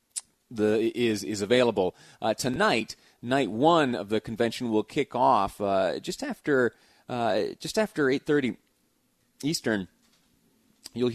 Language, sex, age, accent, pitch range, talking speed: English, male, 30-49, American, 95-125 Hz, 130 wpm